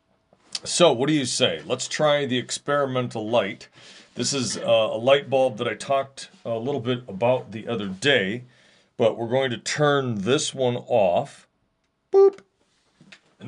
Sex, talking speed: male, 160 wpm